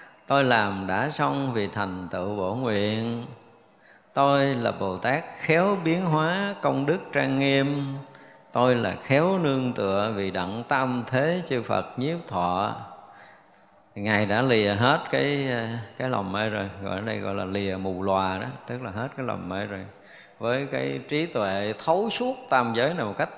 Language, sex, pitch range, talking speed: Vietnamese, male, 100-145 Hz, 175 wpm